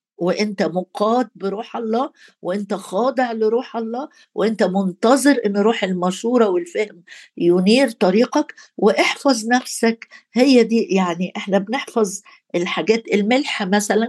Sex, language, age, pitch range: female, Arabic, 50-69, 185-235 Hz